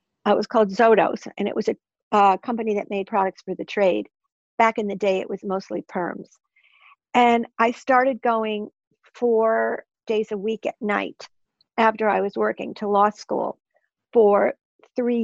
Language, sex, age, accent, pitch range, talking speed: English, female, 50-69, American, 200-230 Hz, 175 wpm